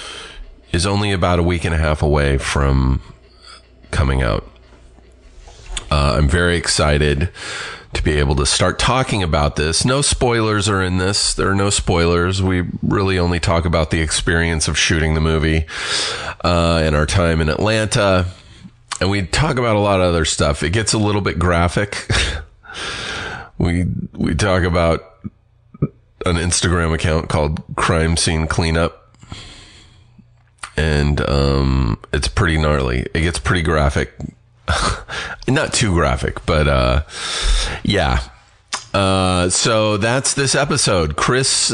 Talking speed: 140 wpm